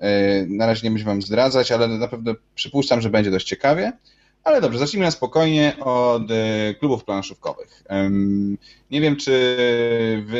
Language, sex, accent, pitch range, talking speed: Polish, male, native, 100-120 Hz, 150 wpm